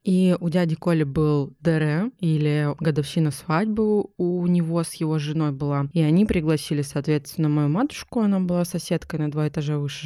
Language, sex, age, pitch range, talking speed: Russian, female, 20-39, 150-175 Hz, 165 wpm